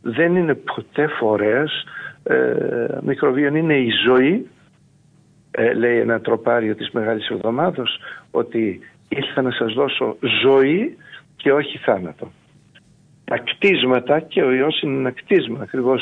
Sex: male